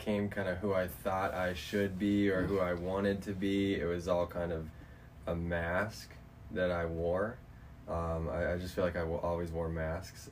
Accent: American